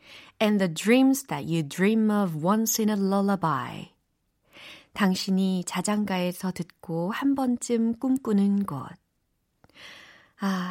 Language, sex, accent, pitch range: Korean, female, native, 165-240 Hz